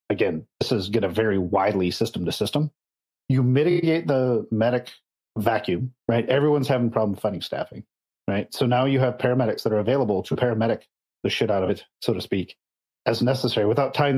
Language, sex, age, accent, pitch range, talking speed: English, male, 40-59, American, 115-135 Hz, 190 wpm